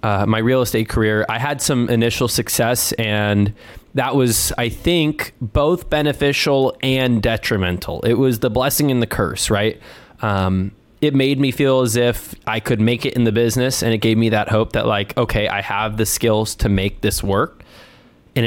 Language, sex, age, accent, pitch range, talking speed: English, male, 20-39, American, 110-135 Hz, 190 wpm